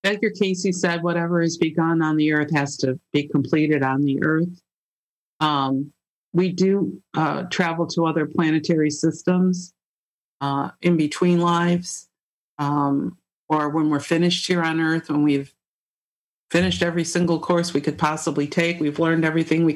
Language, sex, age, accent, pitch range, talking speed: English, female, 50-69, American, 145-170 Hz, 155 wpm